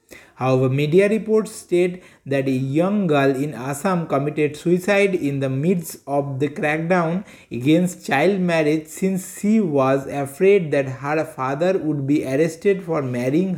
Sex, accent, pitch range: male, Indian, 140-175 Hz